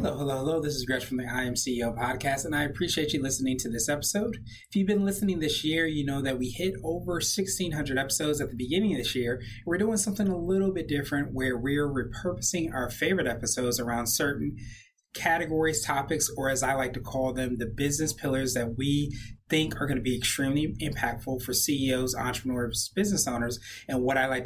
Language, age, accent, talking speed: English, 30-49, American, 210 wpm